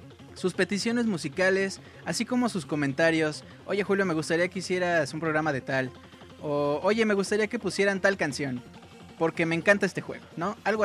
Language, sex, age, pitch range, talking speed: Spanish, male, 20-39, 155-200 Hz, 175 wpm